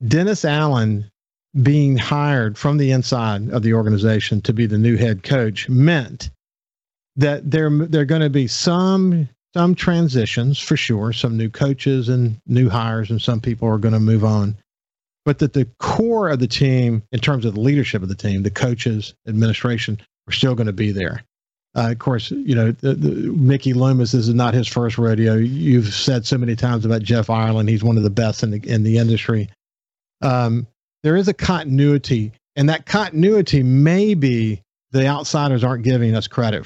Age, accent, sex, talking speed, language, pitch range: 50-69, American, male, 190 wpm, English, 110-140 Hz